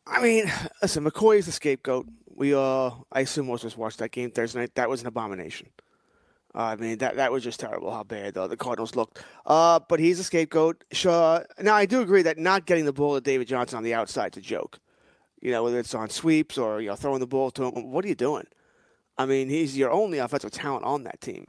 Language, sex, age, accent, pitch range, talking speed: English, male, 30-49, American, 125-165 Hz, 250 wpm